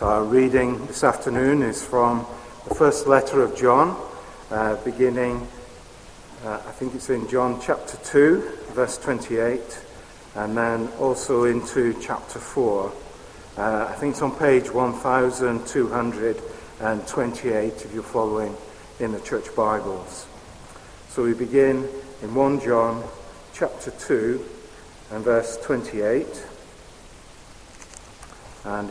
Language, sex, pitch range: English, male, 110-145 Hz